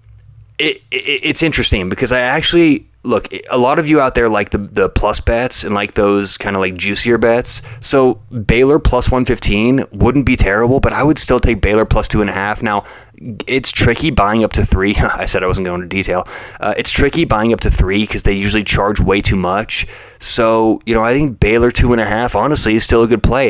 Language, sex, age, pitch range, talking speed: English, male, 20-39, 100-120 Hz, 225 wpm